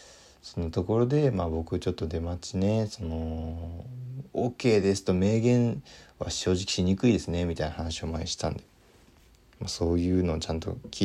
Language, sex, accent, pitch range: Japanese, male, native, 90-120 Hz